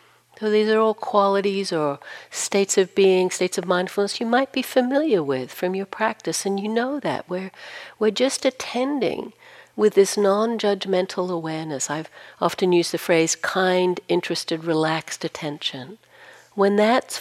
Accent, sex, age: American, female, 60-79